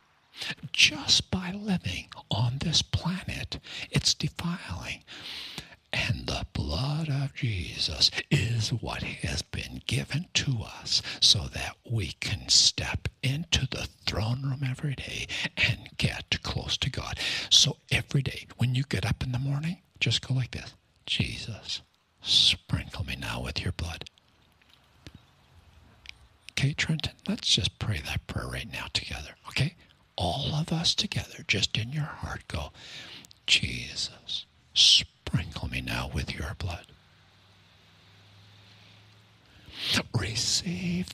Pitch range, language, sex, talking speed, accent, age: 100-135 Hz, English, male, 125 wpm, American, 60-79